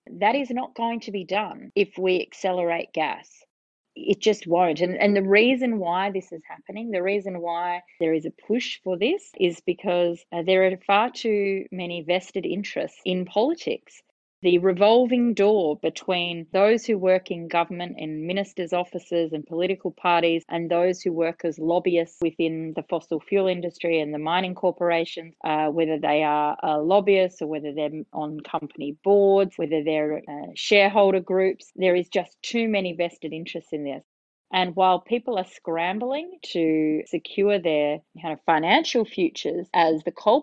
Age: 30-49